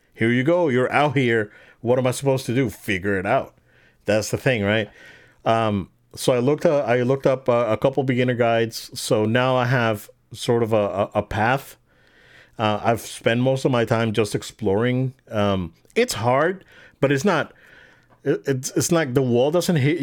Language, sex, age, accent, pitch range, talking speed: English, male, 40-59, American, 105-135 Hz, 190 wpm